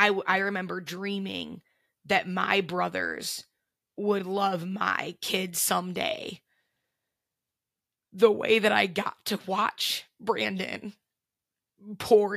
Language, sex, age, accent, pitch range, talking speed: English, female, 20-39, American, 185-215 Hz, 100 wpm